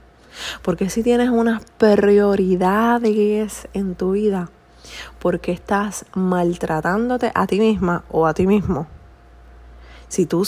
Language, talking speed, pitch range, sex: Spanish, 115 wpm, 170-220 Hz, female